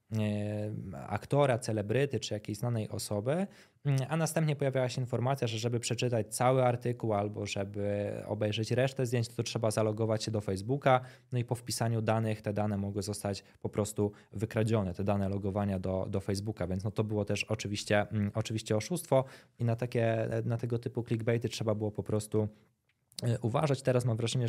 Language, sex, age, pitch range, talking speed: Polish, male, 20-39, 105-125 Hz, 170 wpm